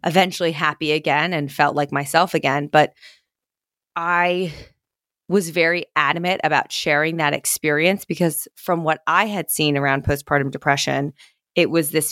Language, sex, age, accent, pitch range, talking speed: English, female, 20-39, American, 150-175 Hz, 145 wpm